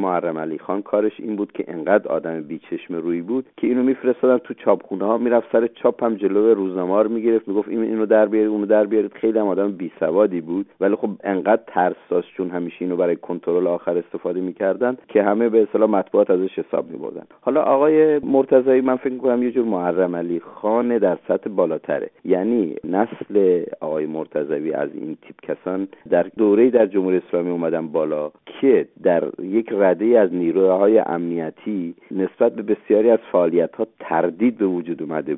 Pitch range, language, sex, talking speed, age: 85-120 Hz, English, male, 170 wpm, 50-69